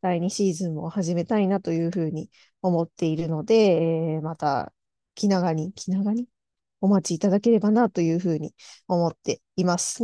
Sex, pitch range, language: female, 170-220 Hz, Japanese